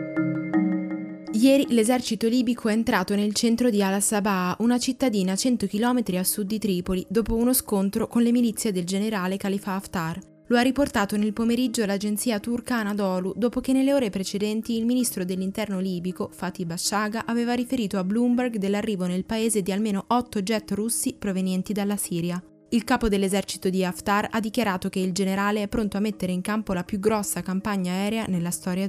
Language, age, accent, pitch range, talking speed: Italian, 20-39, native, 185-225 Hz, 175 wpm